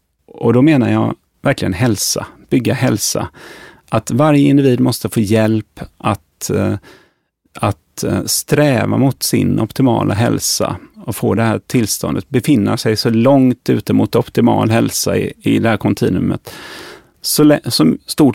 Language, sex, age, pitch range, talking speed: Swedish, male, 30-49, 105-140 Hz, 140 wpm